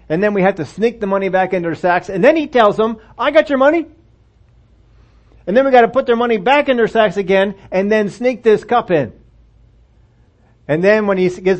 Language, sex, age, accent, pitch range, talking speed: English, male, 40-59, American, 125-205 Hz, 235 wpm